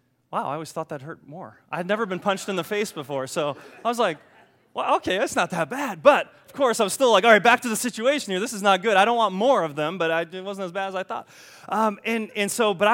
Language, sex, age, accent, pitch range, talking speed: English, male, 20-39, American, 150-205 Hz, 290 wpm